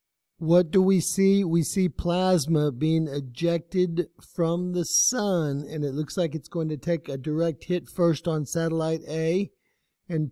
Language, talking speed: English, 165 wpm